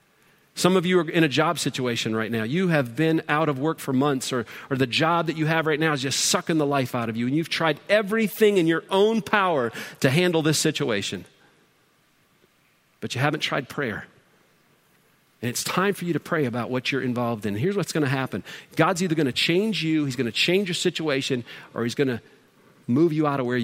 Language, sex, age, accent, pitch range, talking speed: English, male, 40-59, American, 130-160 Hz, 230 wpm